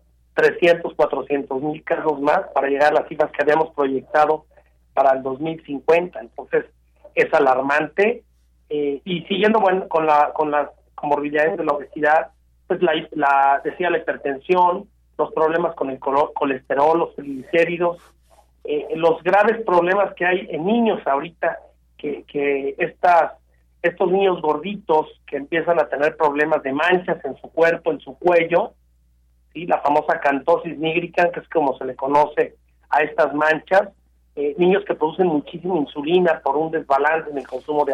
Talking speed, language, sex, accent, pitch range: 155 wpm, Spanish, male, Mexican, 140-170 Hz